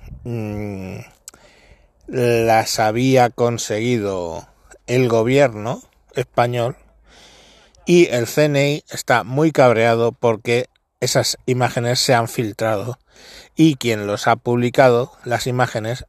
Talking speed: 95 wpm